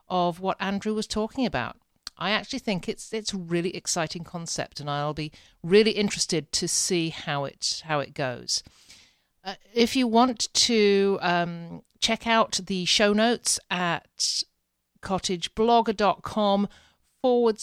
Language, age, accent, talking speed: English, 50-69, British, 140 wpm